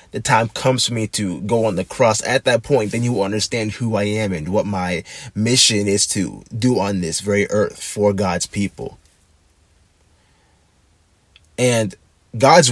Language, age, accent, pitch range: English, 20-39, American, 90-115 Hz